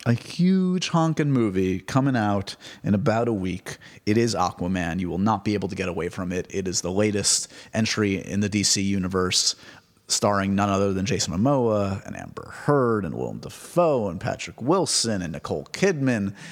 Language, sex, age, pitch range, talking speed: English, male, 30-49, 95-120 Hz, 180 wpm